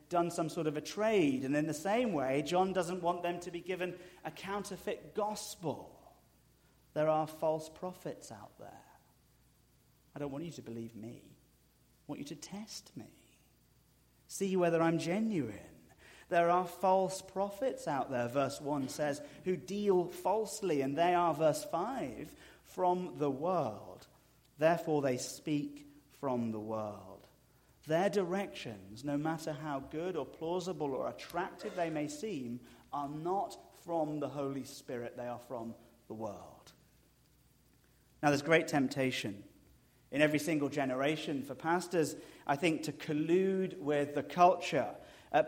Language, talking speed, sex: English, 150 wpm, male